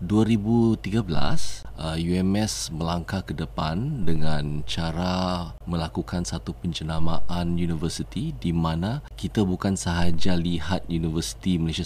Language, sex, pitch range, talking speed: Malay, male, 80-95 Hz, 95 wpm